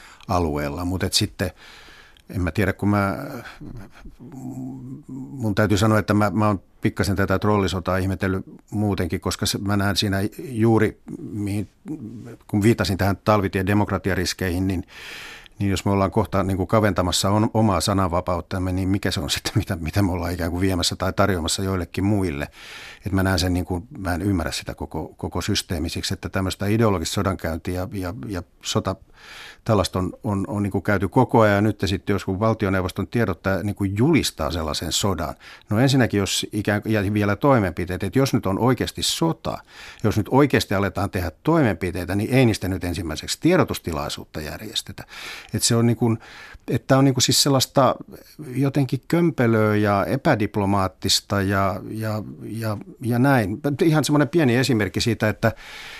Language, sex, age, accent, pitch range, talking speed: Finnish, male, 50-69, native, 95-110 Hz, 160 wpm